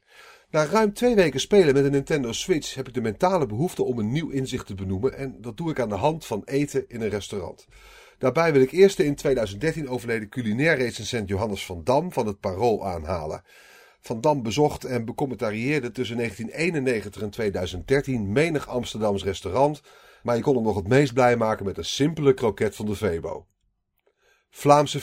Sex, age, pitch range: male, 40-59, 105-145 Hz